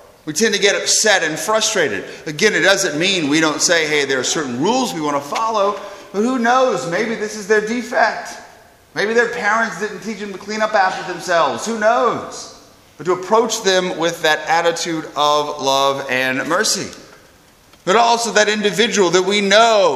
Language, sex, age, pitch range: English, male, 30-49, 155-220 Hz